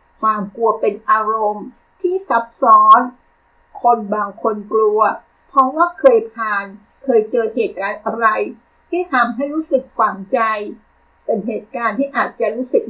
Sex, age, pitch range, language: female, 50-69, 205-260 Hz, Thai